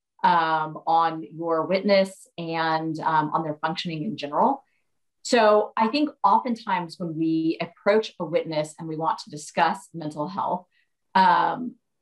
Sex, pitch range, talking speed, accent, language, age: female, 155-200 Hz, 140 wpm, American, English, 30-49